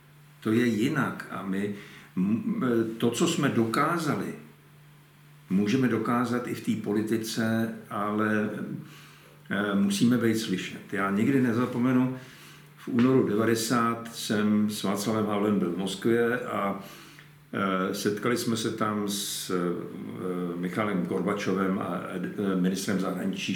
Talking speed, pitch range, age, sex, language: 110 wpm, 105-135 Hz, 60-79, male, Slovak